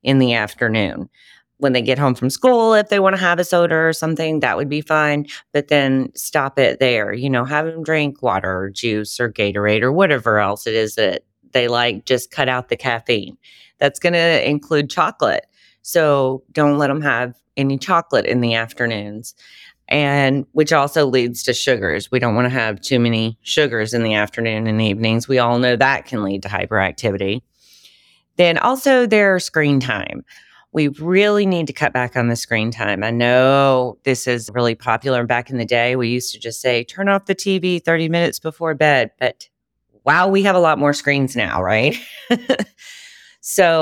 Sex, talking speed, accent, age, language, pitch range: female, 195 wpm, American, 30-49, English, 120-160 Hz